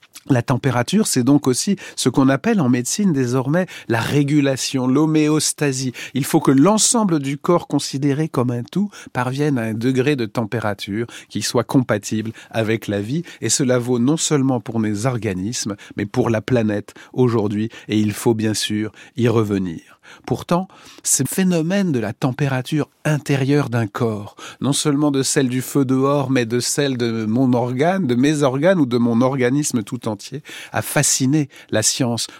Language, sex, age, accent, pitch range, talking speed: French, male, 40-59, French, 120-150 Hz, 170 wpm